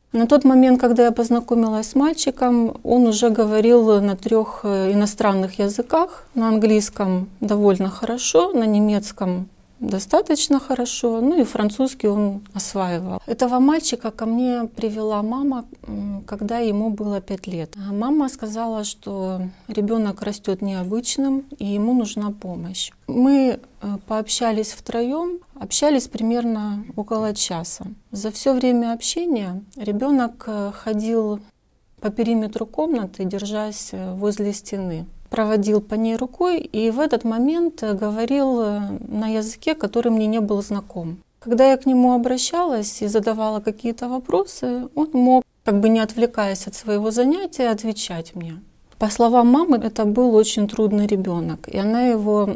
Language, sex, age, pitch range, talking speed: Russian, female, 40-59, 205-245 Hz, 130 wpm